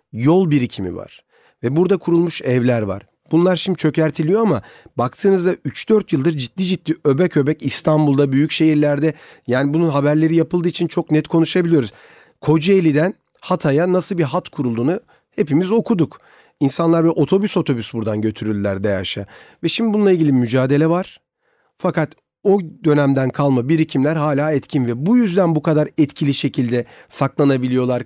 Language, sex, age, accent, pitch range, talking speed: Turkish, male, 40-59, native, 135-175 Hz, 140 wpm